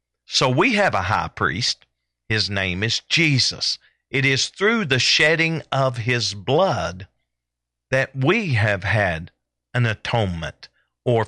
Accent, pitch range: American, 95-130 Hz